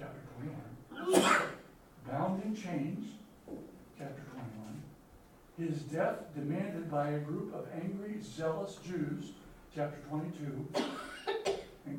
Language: English